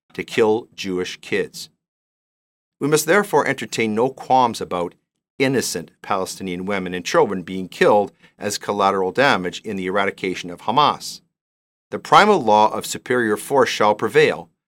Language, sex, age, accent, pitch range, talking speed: English, male, 50-69, American, 95-135 Hz, 140 wpm